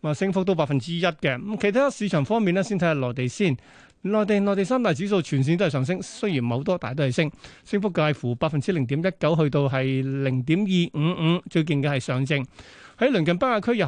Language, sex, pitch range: Chinese, male, 140-195 Hz